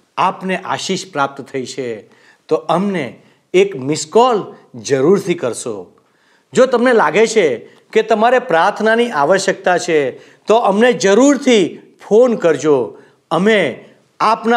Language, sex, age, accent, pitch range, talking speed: Gujarati, male, 50-69, native, 145-210 Hz, 120 wpm